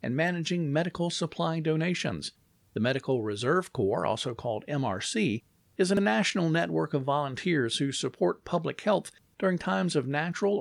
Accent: American